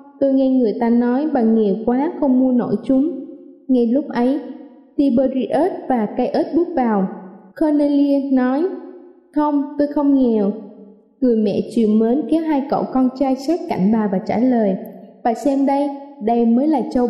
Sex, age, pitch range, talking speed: female, 20-39, 230-285 Hz, 170 wpm